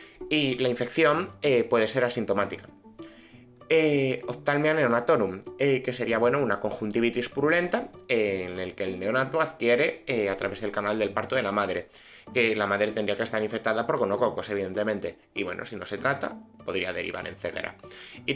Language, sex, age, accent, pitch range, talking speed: Spanish, male, 20-39, Spanish, 105-140 Hz, 180 wpm